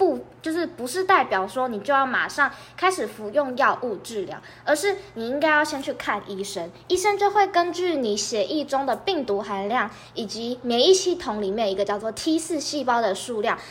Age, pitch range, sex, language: 20-39, 210-295 Hz, female, Chinese